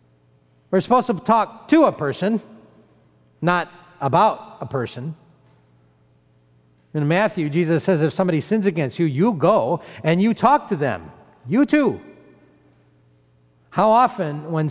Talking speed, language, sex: 130 wpm, English, male